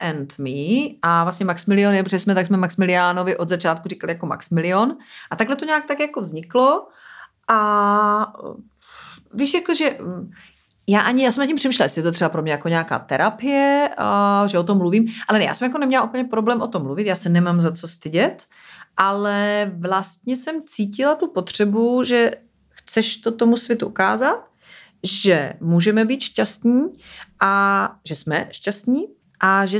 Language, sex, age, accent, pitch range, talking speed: Czech, female, 40-59, native, 185-240 Hz, 175 wpm